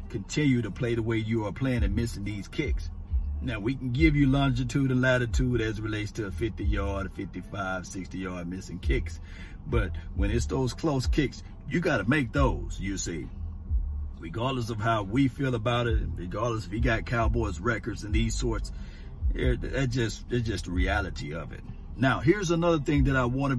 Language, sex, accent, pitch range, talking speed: English, male, American, 85-125 Hz, 195 wpm